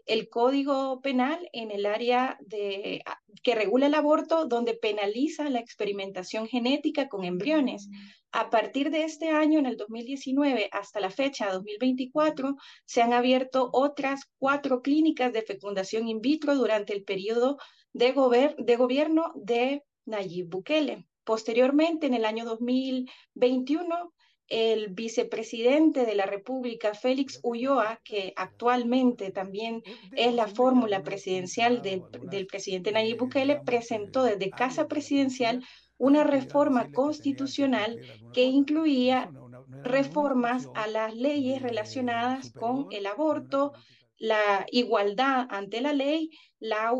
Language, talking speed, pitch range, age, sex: Spanish, 120 wpm, 220-275 Hz, 30-49, female